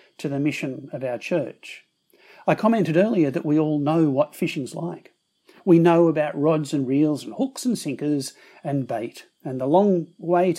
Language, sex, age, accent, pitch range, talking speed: English, male, 50-69, Australian, 150-215 Hz, 180 wpm